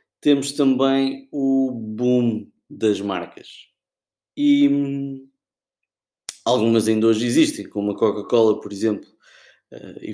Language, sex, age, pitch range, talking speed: Portuguese, male, 20-39, 105-135 Hz, 105 wpm